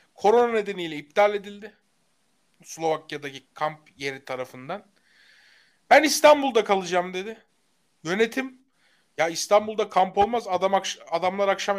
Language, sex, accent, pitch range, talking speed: Turkish, male, native, 160-190 Hz, 105 wpm